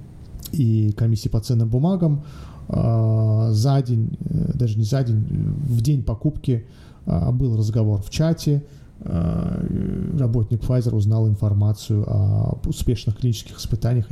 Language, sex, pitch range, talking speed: Russian, male, 110-140 Hz, 110 wpm